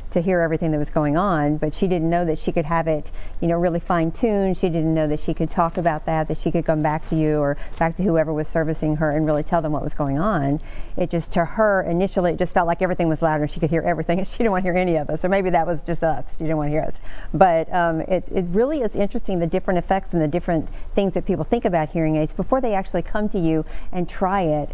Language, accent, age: English, American, 50-69